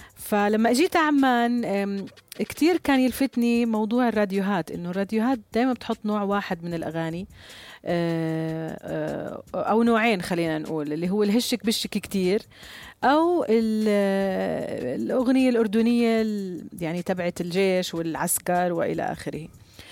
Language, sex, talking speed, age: Arabic, female, 100 wpm, 40-59